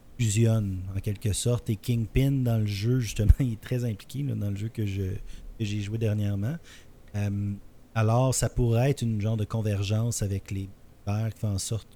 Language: French